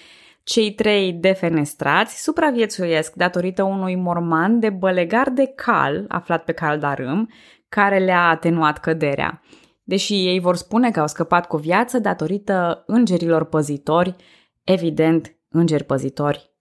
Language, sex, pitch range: Romanian, female, 165-225 Hz